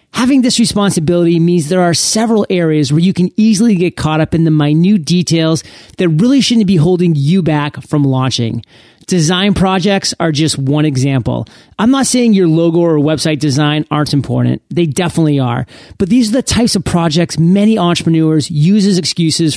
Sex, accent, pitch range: male, American, 145-190 Hz